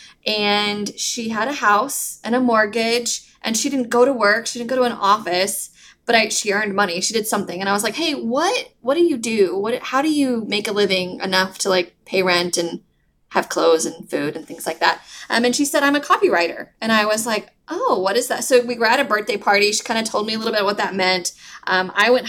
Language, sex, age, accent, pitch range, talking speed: English, female, 20-39, American, 195-245 Hz, 260 wpm